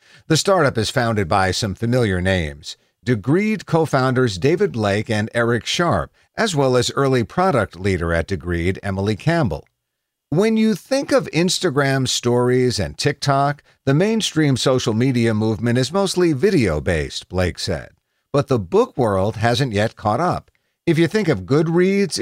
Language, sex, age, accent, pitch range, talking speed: English, male, 50-69, American, 95-145 Hz, 150 wpm